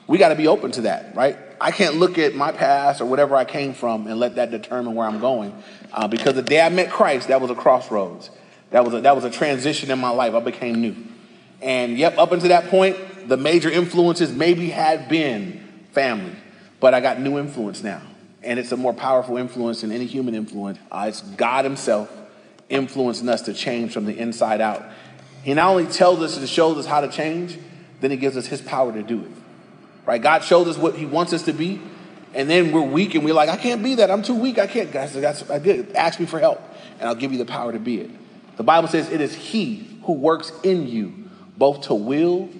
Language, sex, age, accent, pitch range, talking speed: English, male, 30-49, American, 125-185 Hz, 230 wpm